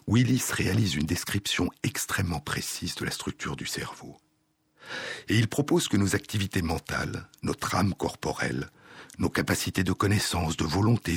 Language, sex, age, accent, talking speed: French, male, 60-79, French, 145 wpm